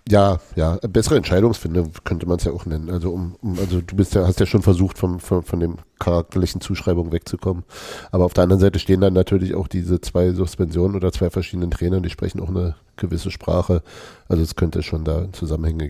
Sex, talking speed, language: male, 210 wpm, German